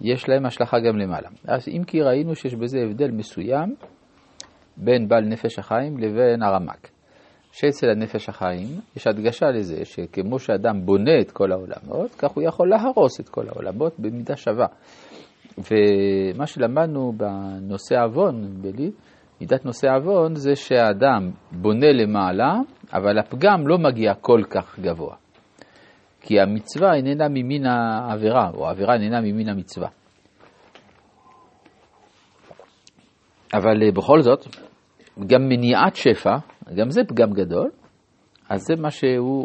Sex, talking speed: male, 130 wpm